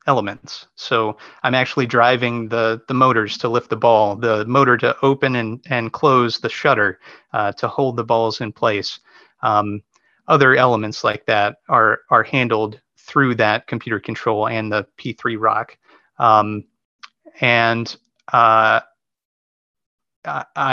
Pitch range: 110-130 Hz